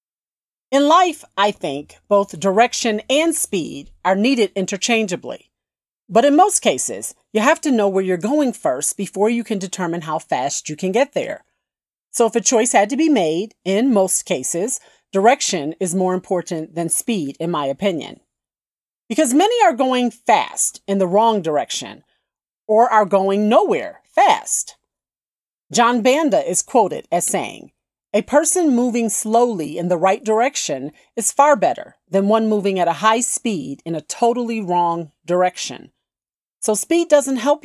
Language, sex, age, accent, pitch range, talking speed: English, female, 40-59, American, 185-255 Hz, 160 wpm